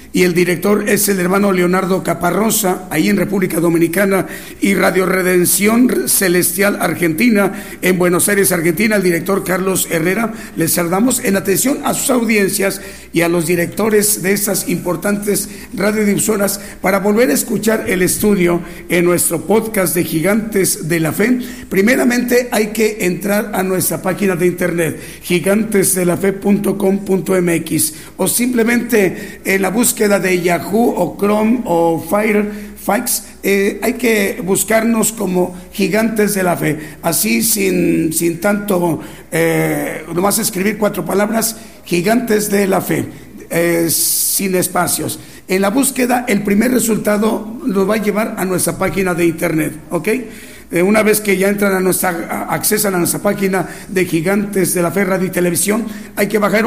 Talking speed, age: 145 wpm, 50-69